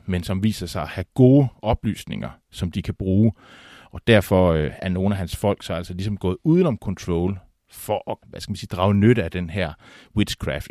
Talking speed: 200 wpm